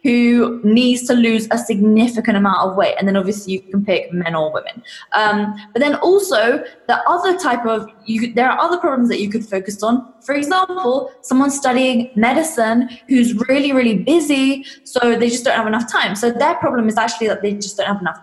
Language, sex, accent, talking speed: English, female, British, 210 wpm